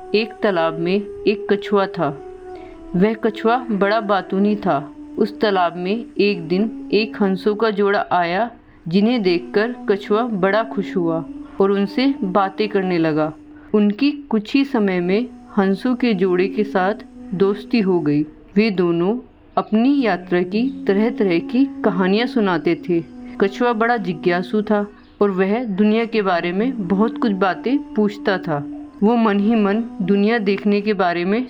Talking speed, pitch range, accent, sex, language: 150 wpm, 195-245 Hz, native, female, Hindi